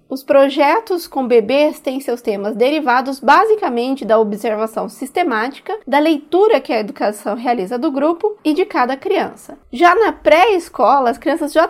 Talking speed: 155 wpm